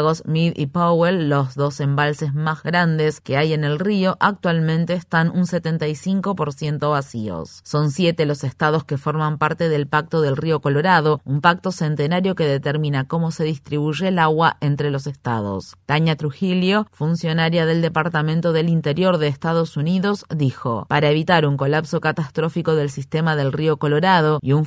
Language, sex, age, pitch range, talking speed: Spanish, female, 30-49, 150-170 Hz, 160 wpm